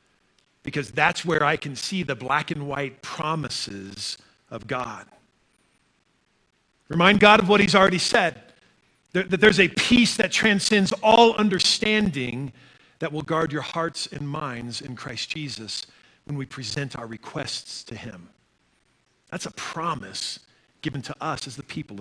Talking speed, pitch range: 145 wpm, 150-205 Hz